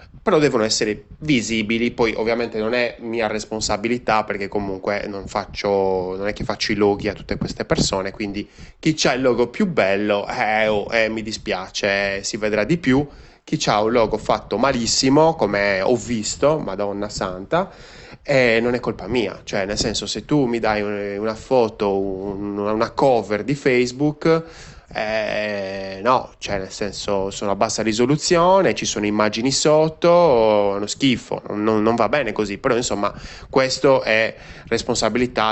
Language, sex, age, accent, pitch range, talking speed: Italian, male, 20-39, native, 100-120 Hz, 160 wpm